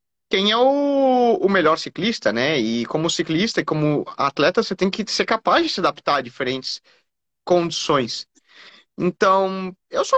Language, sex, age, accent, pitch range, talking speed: Portuguese, male, 20-39, Brazilian, 140-185 Hz, 160 wpm